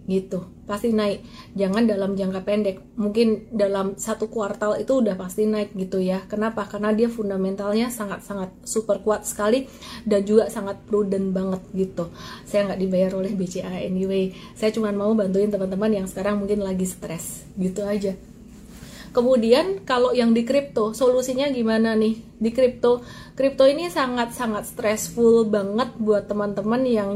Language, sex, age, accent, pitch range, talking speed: Indonesian, female, 30-49, native, 205-235 Hz, 150 wpm